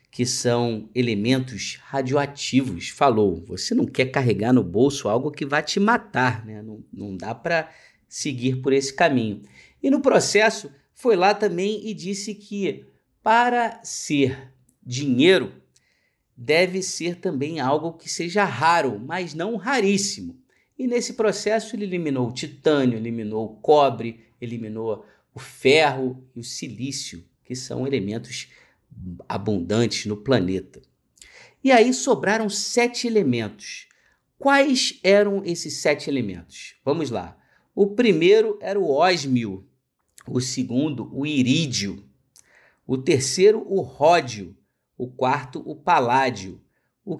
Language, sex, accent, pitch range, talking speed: Portuguese, male, Brazilian, 125-195 Hz, 125 wpm